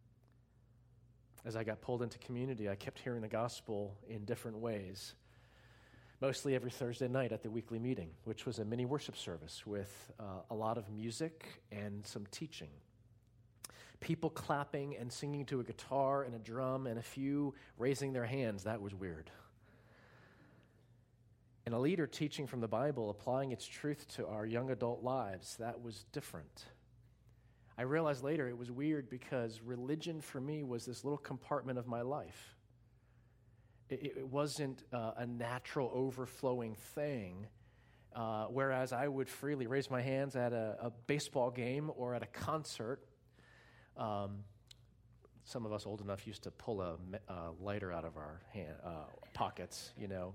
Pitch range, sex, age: 110-130 Hz, male, 40-59